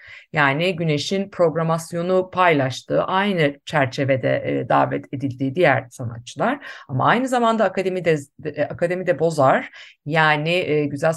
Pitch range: 145-185 Hz